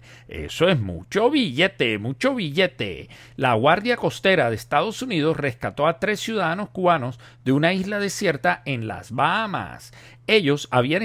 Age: 50-69